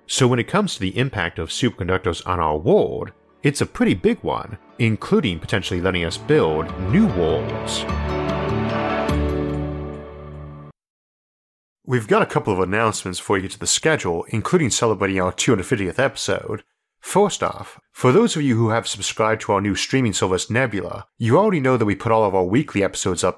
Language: English